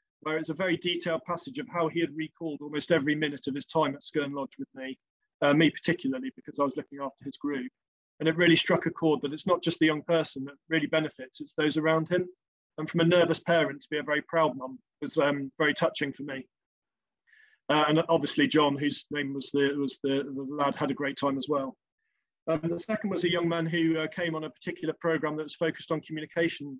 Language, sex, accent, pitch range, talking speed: English, male, British, 145-165 Hz, 240 wpm